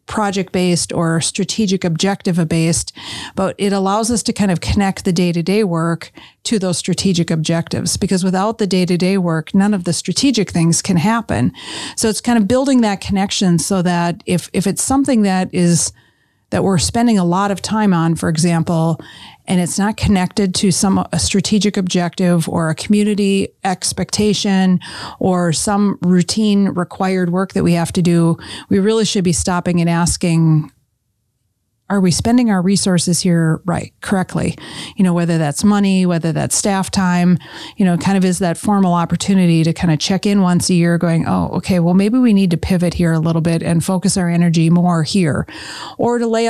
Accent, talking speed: American, 180 wpm